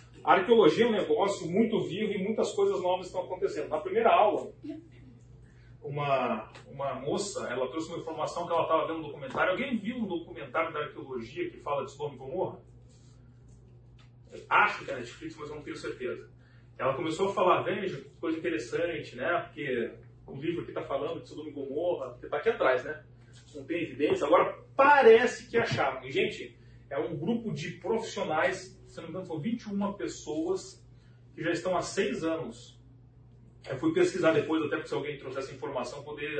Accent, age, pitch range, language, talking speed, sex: Brazilian, 40-59, 125-185 Hz, Portuguese, 175 wpm, male